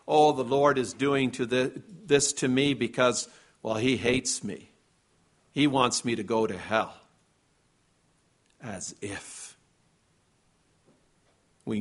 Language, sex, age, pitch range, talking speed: English, male, 50-69, 130-185 Hz, 125 wpm